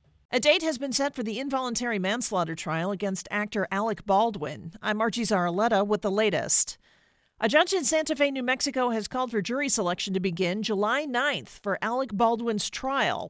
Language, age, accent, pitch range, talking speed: English, 40-59, American, 200-270 Hz, 180 wpm